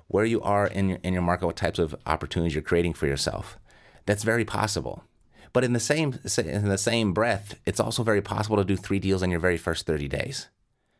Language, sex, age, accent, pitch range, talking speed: English, male, 30-49, American, 80-105 Hz, 205 wpm